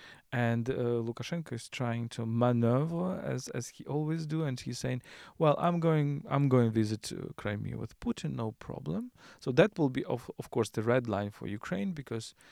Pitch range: 110-140 Hz